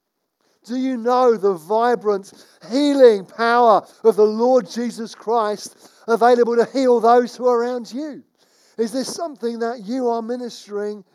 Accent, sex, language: British, male, English